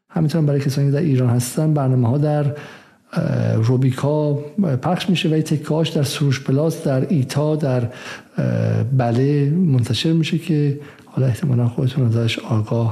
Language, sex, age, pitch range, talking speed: Persian, male, 50-69, 125-150 Hz, 140 wpm